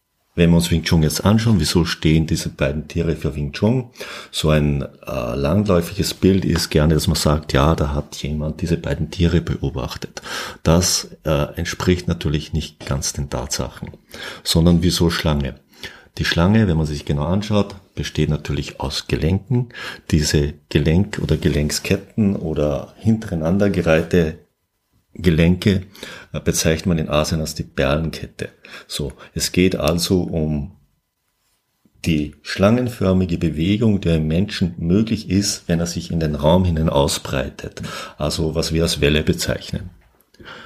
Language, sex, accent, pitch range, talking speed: German, male, German, 75-95 Hz, 145 wpm